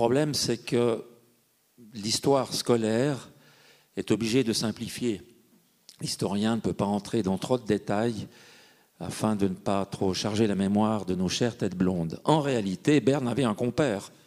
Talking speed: 160 wpm